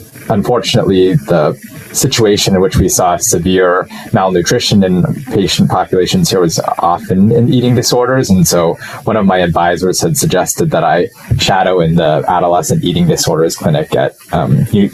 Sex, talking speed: male, 150 wpm